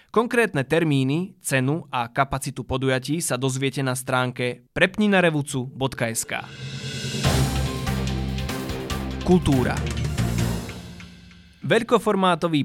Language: Slovak